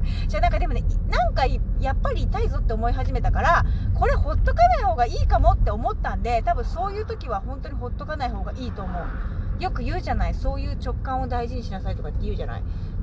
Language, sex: Japanese, female